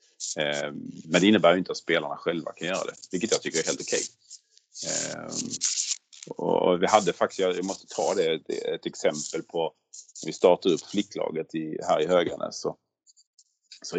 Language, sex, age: Swedish, male, 30-49